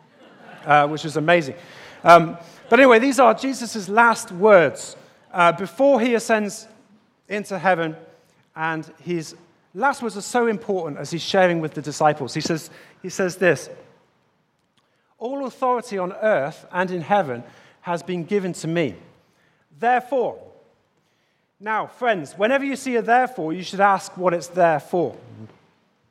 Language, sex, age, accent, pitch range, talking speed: English, male, 40-59, British, 160-230 Hz, 145 wpm